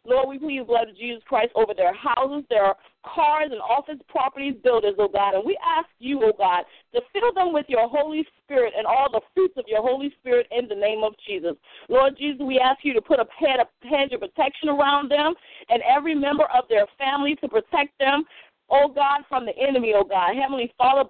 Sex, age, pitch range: female, 40-59, 225-295 Hz